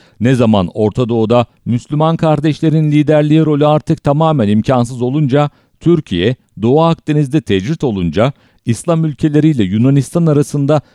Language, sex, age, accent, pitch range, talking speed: English, male, 50-69, Turkish, 110-155 Hz, 115 wpm